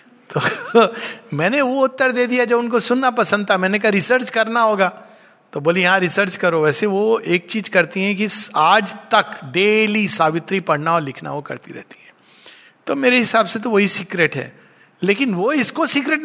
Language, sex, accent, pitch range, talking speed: Hindi, male, native, 170-230 Hz, 190 wpm